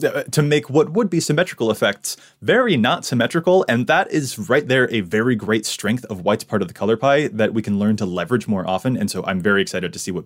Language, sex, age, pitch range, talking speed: English, male, 20-39, 105-150 Hz, 245 wpm